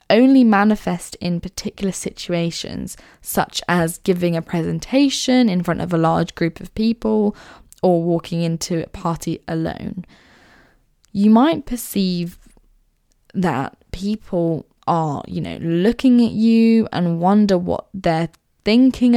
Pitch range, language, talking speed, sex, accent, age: 175-235 Hz, English, 125 wpm, female, British, 10-29